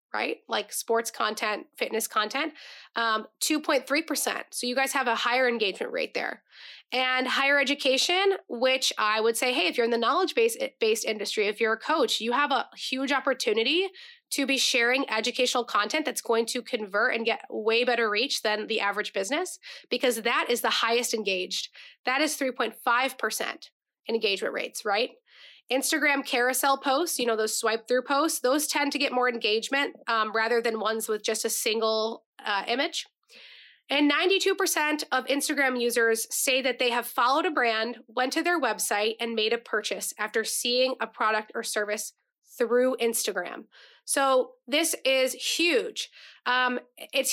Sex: female